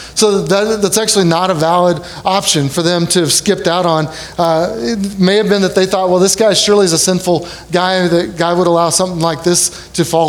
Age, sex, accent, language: 30-49, male, American, English